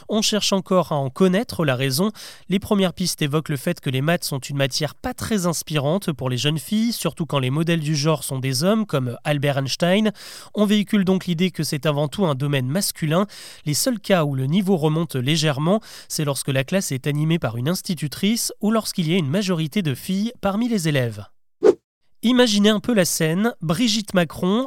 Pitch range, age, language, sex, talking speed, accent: 150-200 Hz, 30-49, French, male, 205 wpm, French